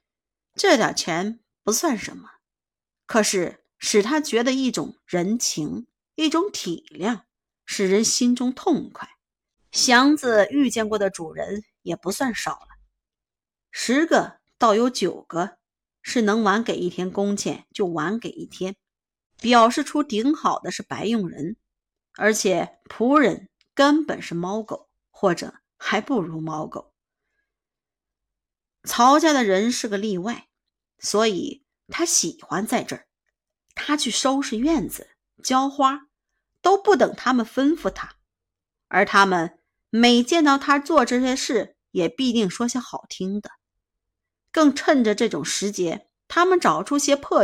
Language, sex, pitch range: Chinese, female, 205-285 Hz